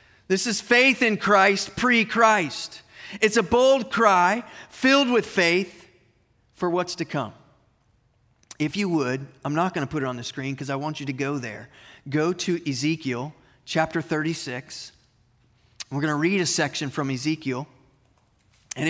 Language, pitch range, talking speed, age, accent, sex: English, 130-180 Hz, 150 wpm, 30-49, American, male